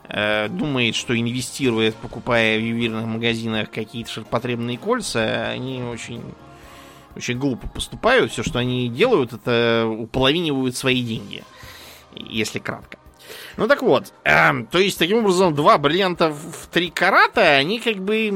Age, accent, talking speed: 20-39, native, 135 wpm